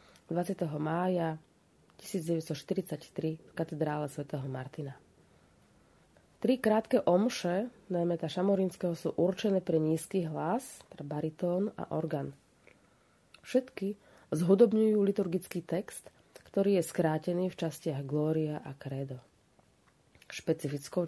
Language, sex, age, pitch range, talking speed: Slovak, female, 30-49, 155-190 Hz, 95 wpm